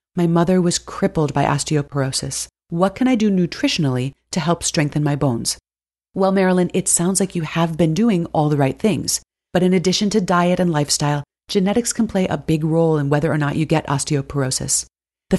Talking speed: 195 wpm